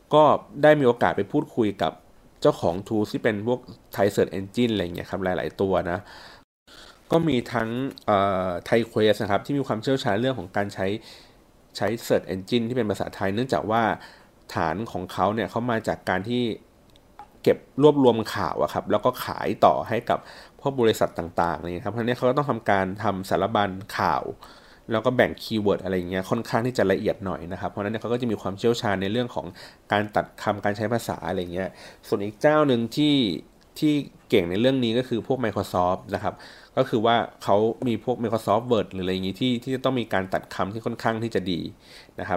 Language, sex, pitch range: Thai, male, 95-120 Hz